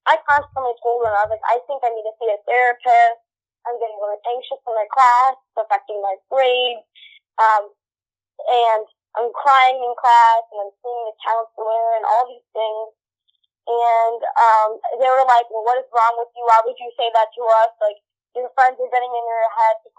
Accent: American